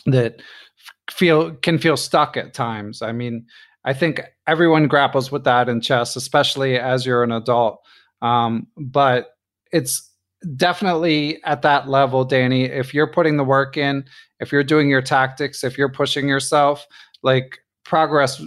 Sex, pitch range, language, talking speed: male, 125-150 Hz, English, 155 wpm